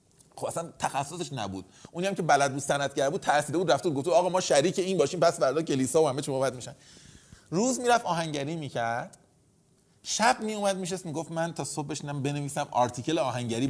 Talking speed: 200 wpm